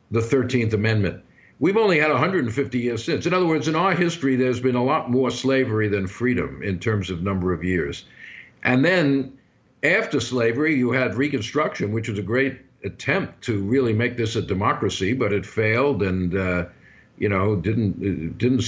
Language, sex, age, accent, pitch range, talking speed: English, male, 50-69, American, 100-130 Hz, 180 wpm